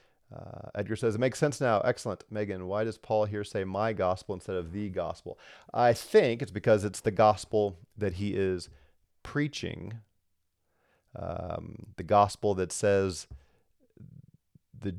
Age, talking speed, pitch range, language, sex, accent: 40-59, 150 wpm, 90-115 Hz, English, male, American